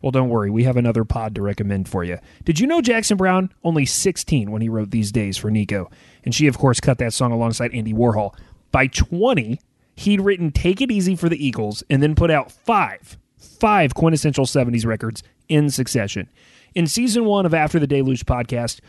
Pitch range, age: 115-155 Hz, 30-49